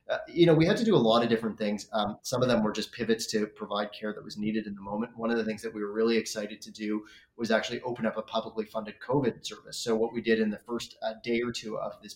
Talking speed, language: 300 wpm, English